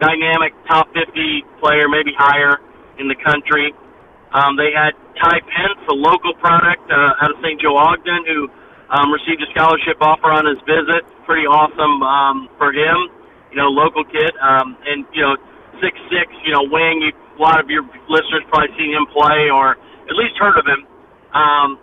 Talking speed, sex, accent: 185 wpm, male, American